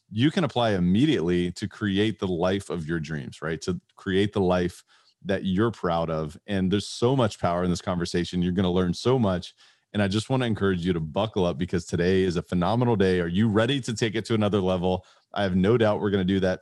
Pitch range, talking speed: 90-105 Hz, 245 wpm